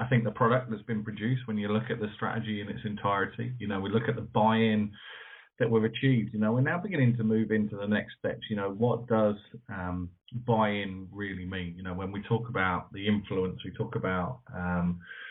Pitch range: 95-110 Hz